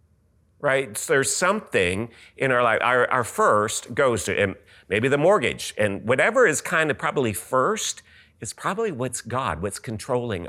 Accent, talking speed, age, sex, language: American, 165 wpm, 50-69, male, English